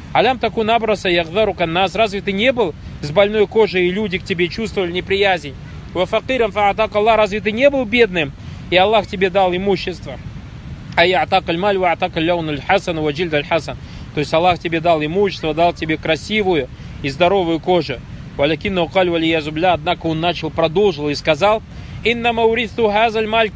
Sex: male